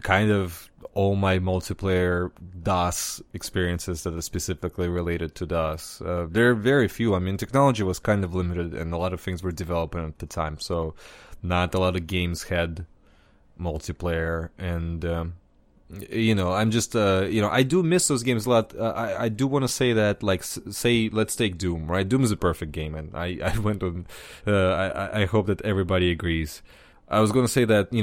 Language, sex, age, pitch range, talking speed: English, male, 20-39, 90-110 Hz, 205 wpm